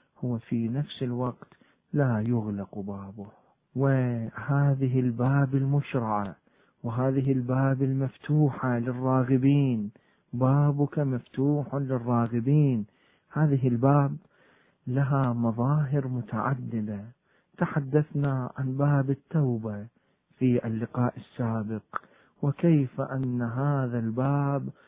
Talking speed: 80 wpm